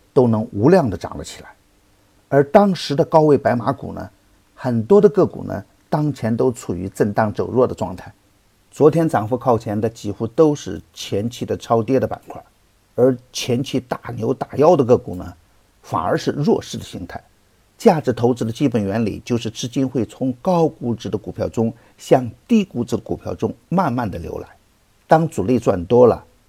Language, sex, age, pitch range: Chinese, male, 50-69, 100-130 Hz